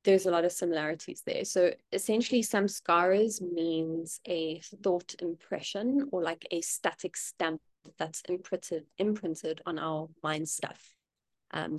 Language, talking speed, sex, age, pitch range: English, 130 wpm, female, 20-39, 160-195 Hz